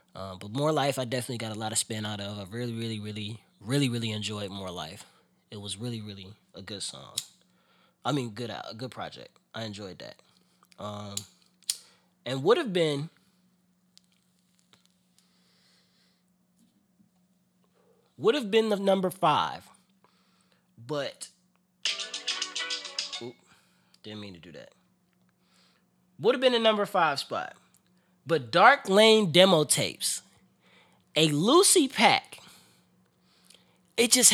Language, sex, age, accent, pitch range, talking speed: English, male, 20-39, American, 115-185 Hz, 130 wpm